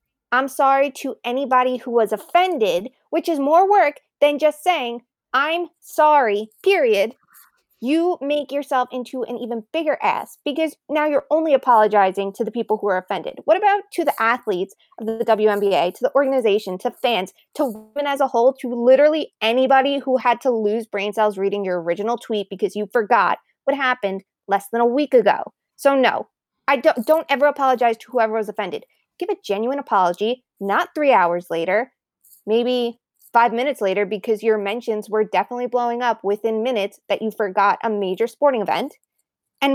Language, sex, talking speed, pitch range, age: English, female, 175 wpm, 205-270 Hz, 20-39